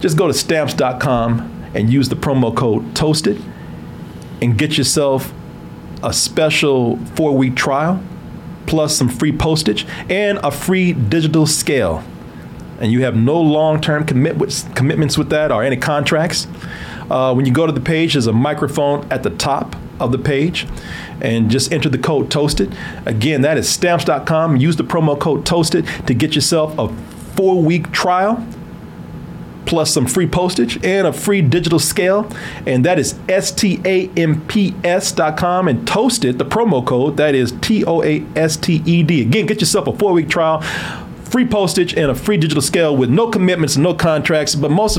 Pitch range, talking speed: 140-180 Hz, 165 wpm